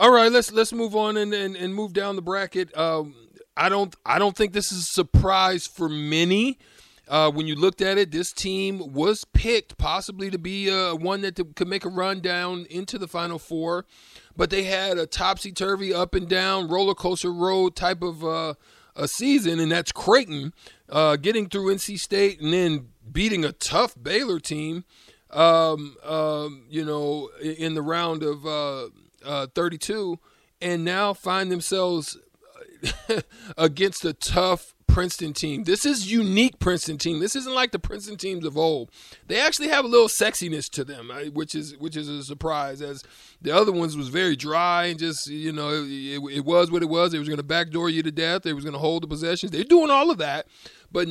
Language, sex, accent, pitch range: English, male, American, 155-195 Hz